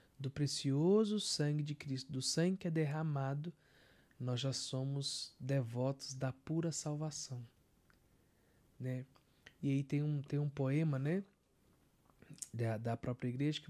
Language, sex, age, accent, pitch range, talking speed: Portuguese, male, 20-39, Brazilian, 130-150 Hz, 130 wpm